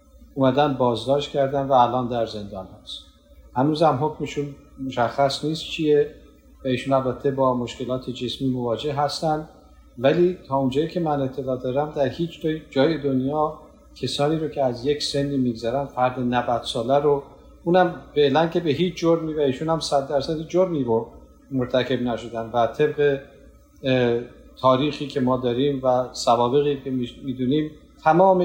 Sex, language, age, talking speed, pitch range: male, Persian, 50-69, 150 wpm, 125-150 Hz